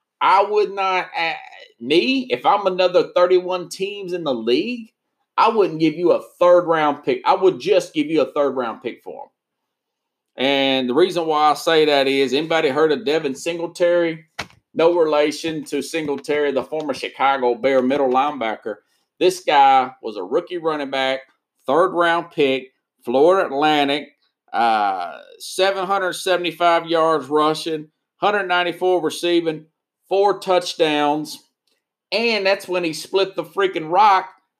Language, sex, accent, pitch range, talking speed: English, male, American, 155-205 Hz, 140 wpm